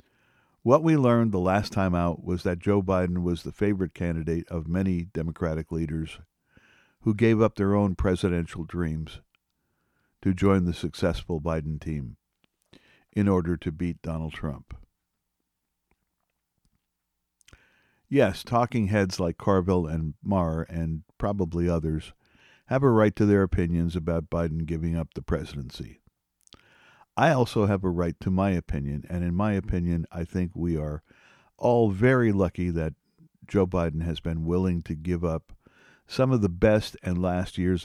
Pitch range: 80-100 Hz